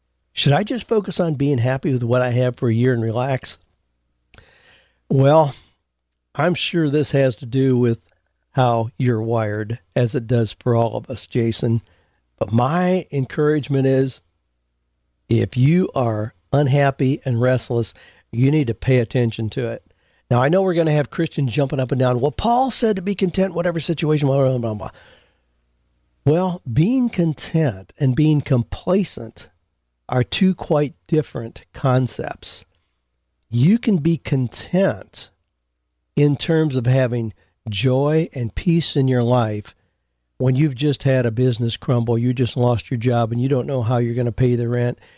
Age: 50-69